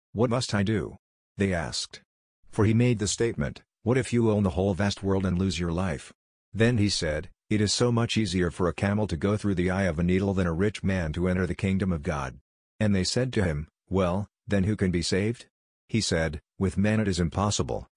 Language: English